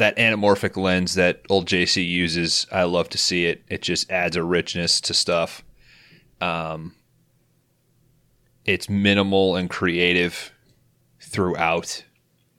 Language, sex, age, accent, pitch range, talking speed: English, male, 30-49, American, 90-115 Hz, 120 wpm